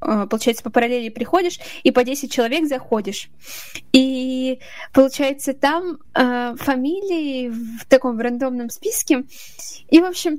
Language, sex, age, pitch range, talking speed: Russian, female, 10-29, 240-290 Hz, 125 wpm